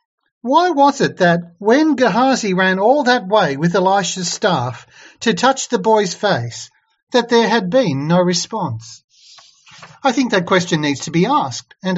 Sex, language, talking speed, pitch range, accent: male, English, 165 wpm, 155-225 Hz, Australian